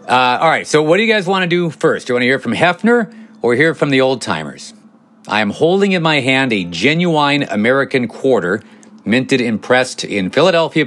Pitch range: 120-180 Hz